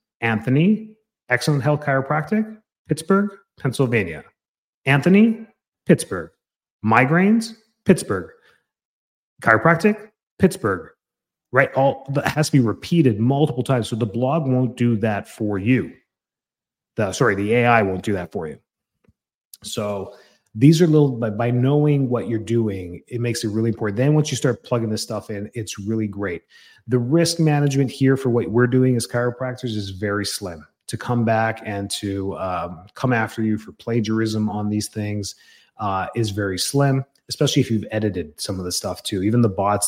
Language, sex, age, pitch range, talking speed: English, male, 30-49, 105-135 Hz, 160 wpm